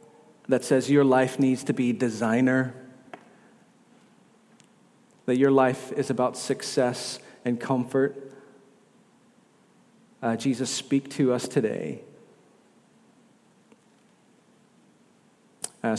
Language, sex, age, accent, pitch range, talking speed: English, male, 40-59, American, 125-190 Hz, 85 wpm